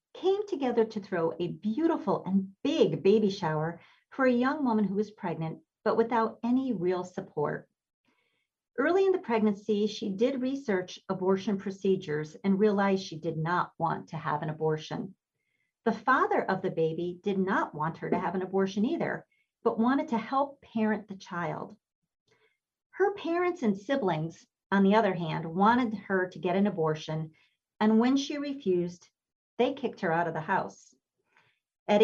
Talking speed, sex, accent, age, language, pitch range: 165 wpm, female, American, 50-69, English, 175-230 Hz